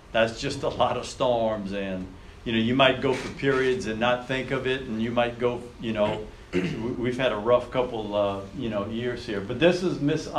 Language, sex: English, male